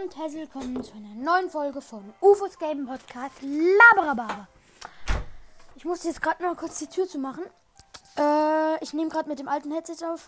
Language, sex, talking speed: German, female, 180 wpm